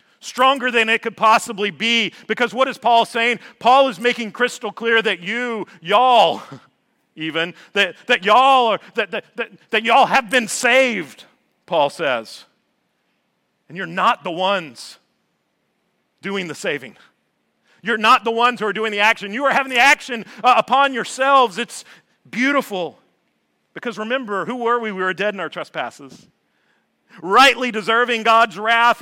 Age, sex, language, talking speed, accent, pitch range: 40-59, male, English, 155 wpm, American, 190-250 Hz